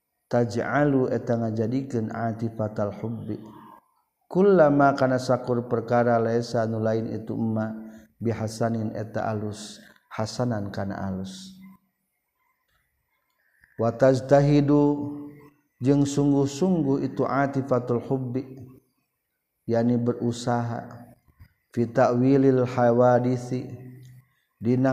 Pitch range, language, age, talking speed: 110-130 Hz, Indonesian, 50-69, 75 wpm